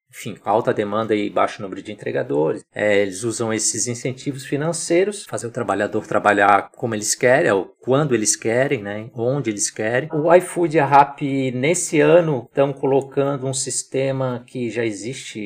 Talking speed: 165 wpm